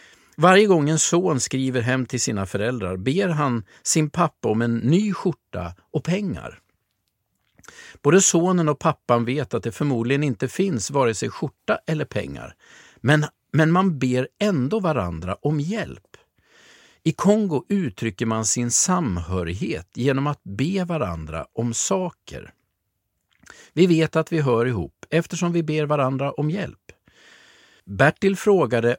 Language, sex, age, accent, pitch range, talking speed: Swedish, male, 50-69, native, 115-170 Hz, 140 wpm